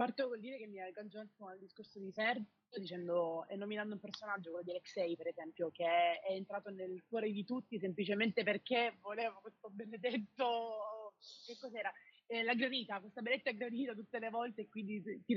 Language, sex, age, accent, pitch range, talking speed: Italian, female, 20-39, native, 190-230 Hz, 190 wpm